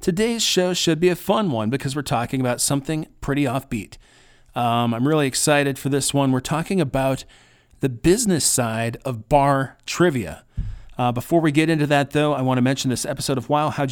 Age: 40-59